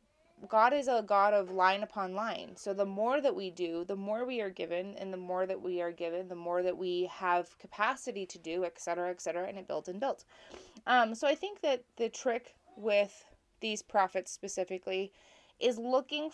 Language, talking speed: English, 205 wpm